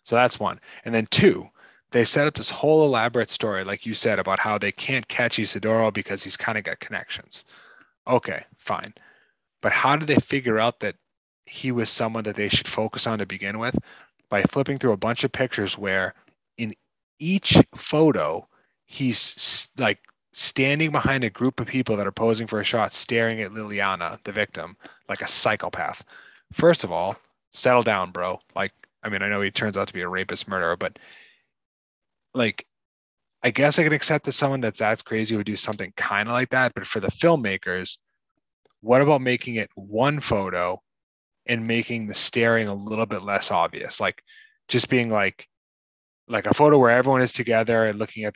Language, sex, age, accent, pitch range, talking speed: English, male, 30-49, American, 105-125 Hz, 190 wpm